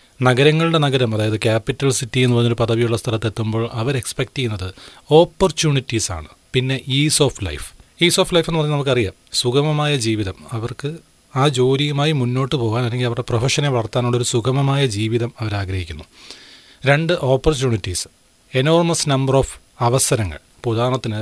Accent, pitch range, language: native, 110-135 Hz, Malayalam